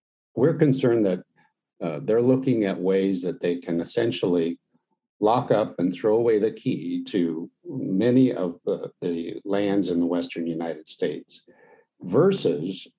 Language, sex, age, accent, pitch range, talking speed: English, male, 50-69, American, 90-125 Hz, 145 wpm